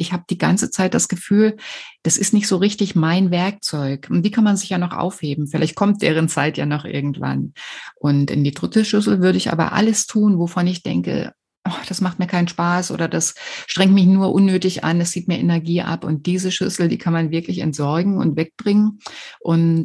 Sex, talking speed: female, 210 wpm